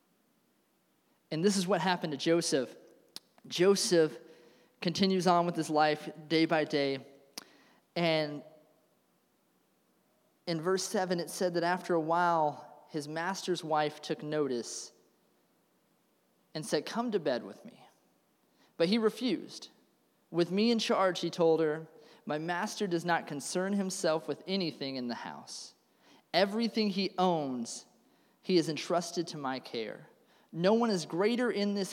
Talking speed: 140 wpm